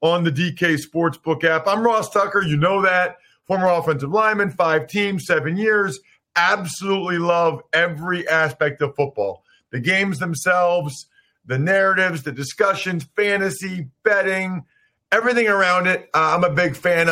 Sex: male